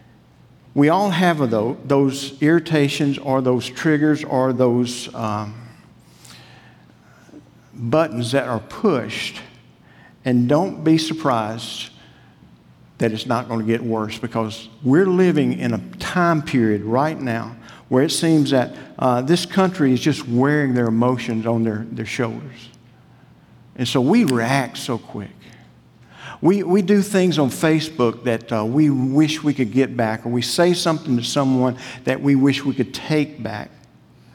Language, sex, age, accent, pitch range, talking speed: English, male, 50-69, American, 115-145 Hz, 145 wpm